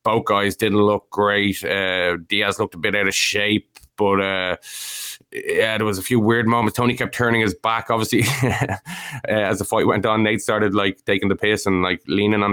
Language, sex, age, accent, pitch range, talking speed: English, male, 20-39, Irish, 95-105 Hz, 210 wpm